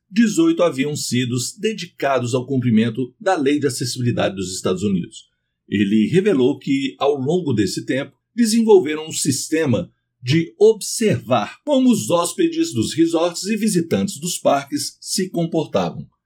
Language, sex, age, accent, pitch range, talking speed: Portuguese, male, 60-79, Brazilian, 130-190 Hz, 135 wpm